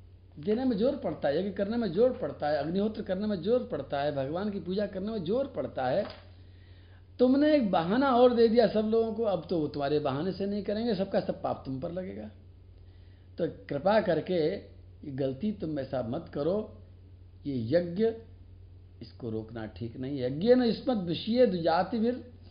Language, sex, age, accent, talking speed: Hindi, male, 60-79, native, 180 wpm